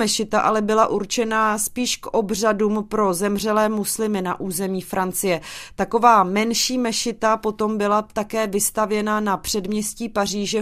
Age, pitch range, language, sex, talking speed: 30-49, 200-225 Hz, Czech, female, 130 wpm